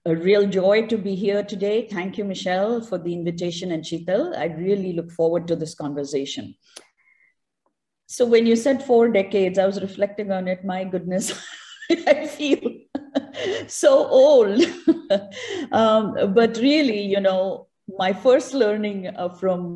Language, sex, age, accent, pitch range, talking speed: English, female, 50-69, Indian, 170-230 Hz, 150 wpm